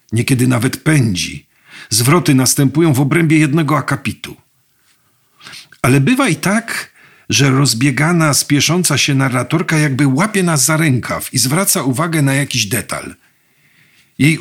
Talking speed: 125 wpm